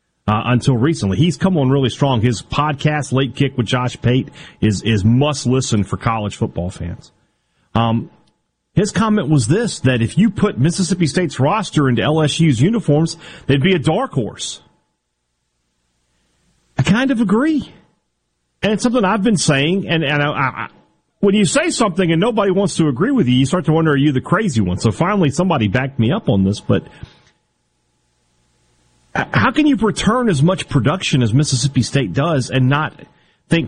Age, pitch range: 40-59, 125-210 Hz